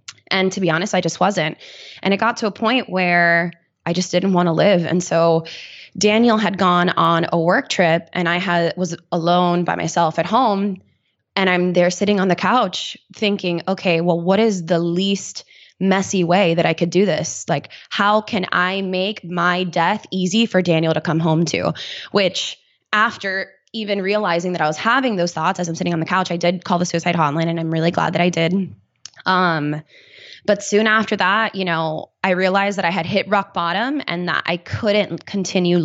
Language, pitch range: English, 170-200 Hz